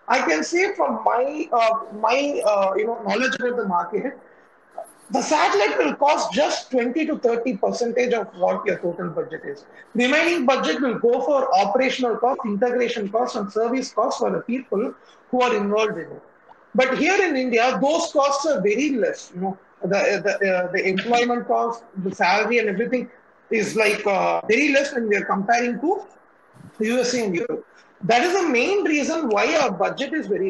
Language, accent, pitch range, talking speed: Tamil, native, 225-320 Hz, 185 wpm